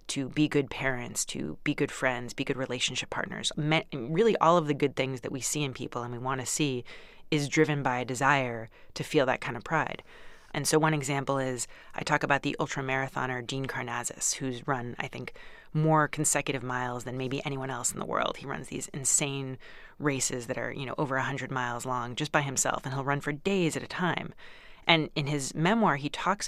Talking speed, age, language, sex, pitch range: 220 wpm, 30-49, English, female, 130-160 Hz